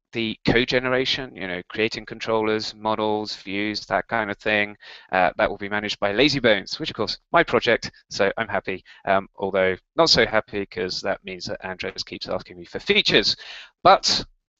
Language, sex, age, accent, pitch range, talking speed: English, male, 20-39, British, 100-120 Hz, 185 wpm